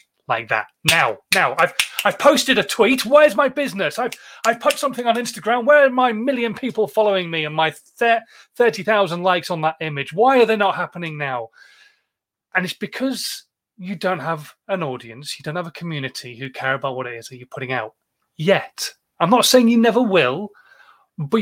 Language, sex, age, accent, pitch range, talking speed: English, male, 30-49, British, 160-225 Hz, 195 wpm